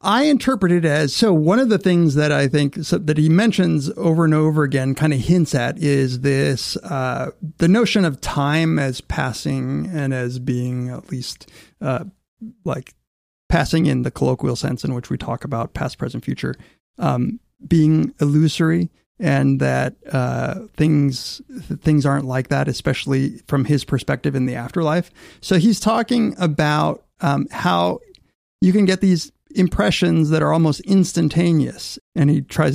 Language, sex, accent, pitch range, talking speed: English, male, American, 135-170 Hz, 170 wpm